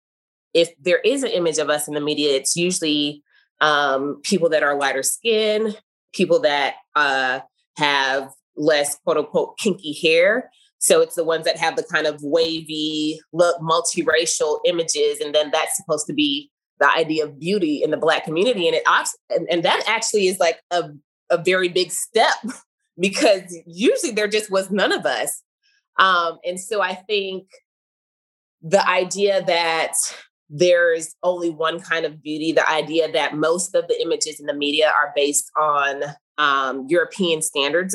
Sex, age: female, 20-39